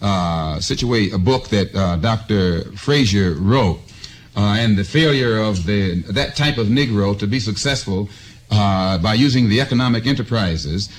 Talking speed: 155 wpm